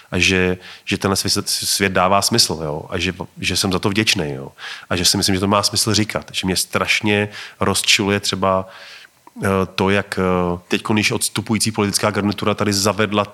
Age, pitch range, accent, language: 30-49, 95-105 Hz, native, Czech